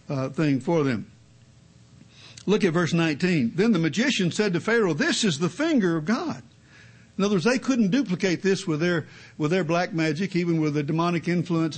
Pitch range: 150-205 Hz